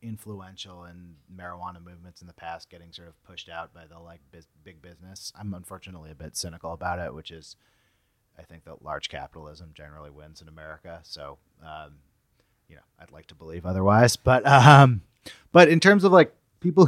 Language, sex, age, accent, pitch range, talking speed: English, male, 30-49, American, 90-110 Hz, 185 wpm